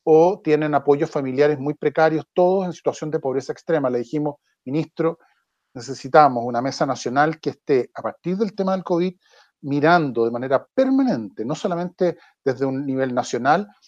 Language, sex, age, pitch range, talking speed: Spanish, male, 40-59, 135-175 Hz, 160 wpm